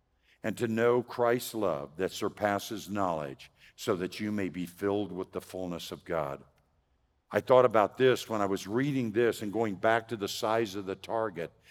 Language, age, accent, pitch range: English, 60-79, American, 90-120 Hz